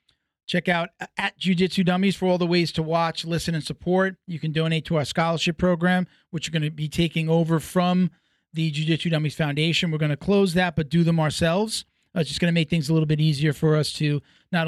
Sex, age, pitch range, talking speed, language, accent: male, 40-59, 155-175 Hz, 230 wpm, English, American